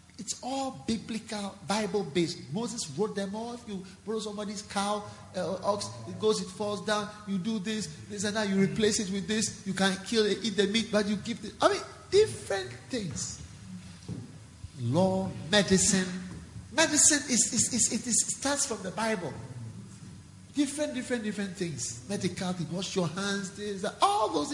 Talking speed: 175 wpm